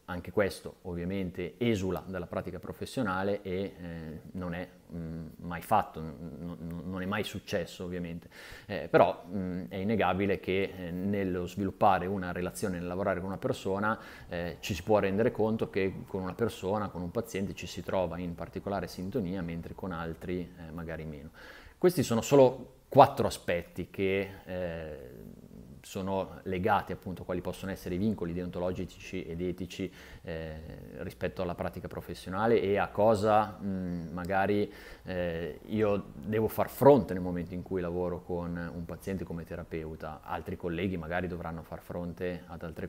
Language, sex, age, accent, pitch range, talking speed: Italian, male, 30-49, native, 85-95 Hz, 155 wpm